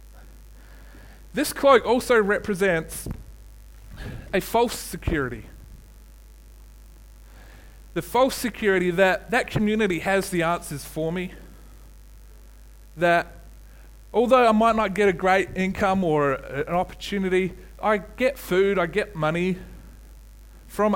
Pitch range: 160-205 Hz